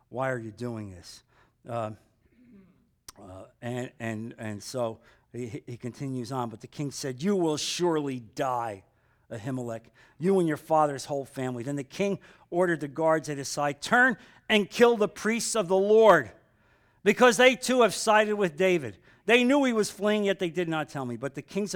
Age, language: 50-69, English